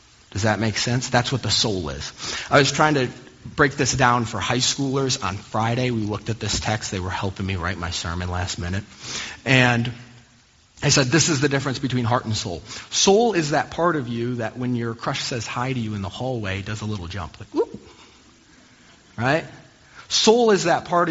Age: 30-49